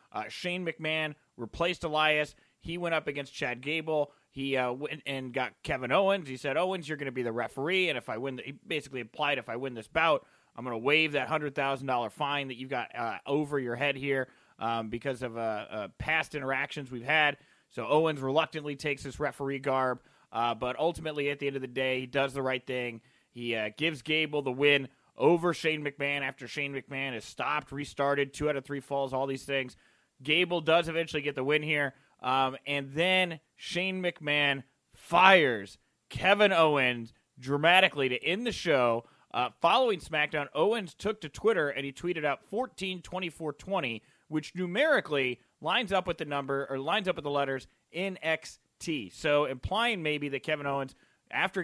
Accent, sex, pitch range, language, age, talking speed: American, male, 135-160 Hz, English, 30-49, 185 wpm